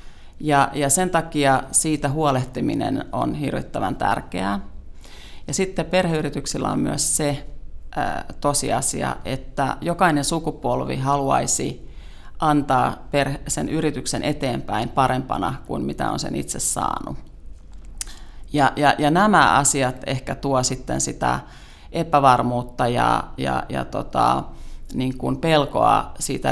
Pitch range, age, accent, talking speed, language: 100-150 Hz, 30-49, native, 100 wpm, Finnish